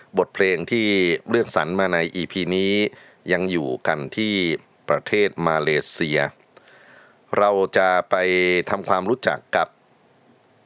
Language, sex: Thai, male